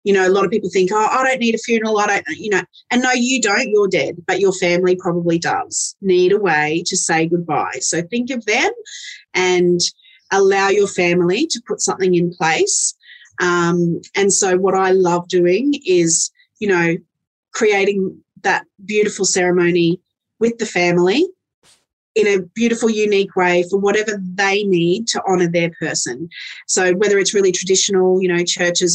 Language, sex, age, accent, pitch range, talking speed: English, female, 30-49, Australian, 175-205 Hz, 175 wpm